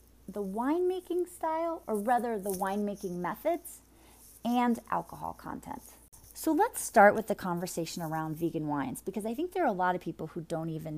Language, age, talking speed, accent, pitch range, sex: English, 30-49, 175 wpm, American, 170-230 Hz, female